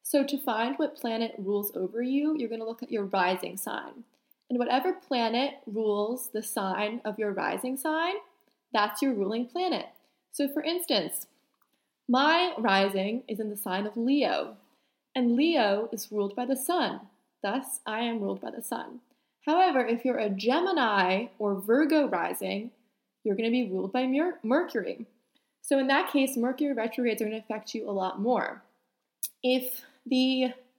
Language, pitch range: English, 215-280 Hz